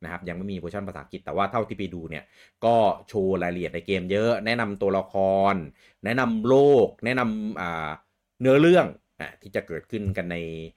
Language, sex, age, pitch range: Thai, male, 30-49, 85-110 Hz